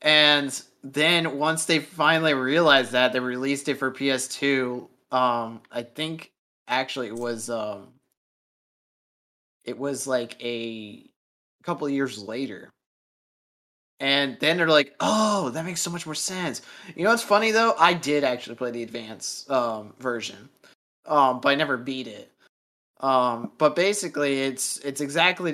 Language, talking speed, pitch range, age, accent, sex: English, 150 wpm, 125-155 Hz, 20-39, American, male